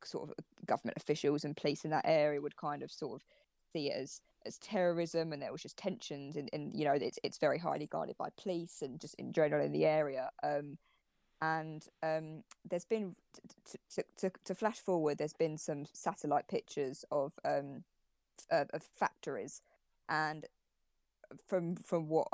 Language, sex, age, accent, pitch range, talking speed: English, female, 20-39, British, 145-170 Hz, 180 wpm